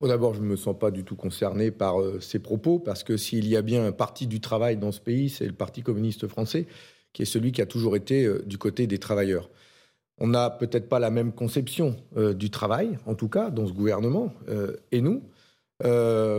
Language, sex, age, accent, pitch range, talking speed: French, male, 40-59, French, 110-145 Hz, 235 wpm